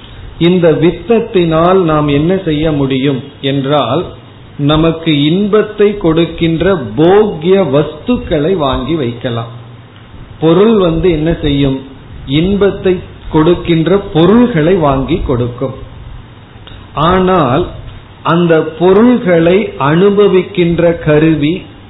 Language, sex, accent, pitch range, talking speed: Tamil, male, native, 130-175 Hz, 75 wpm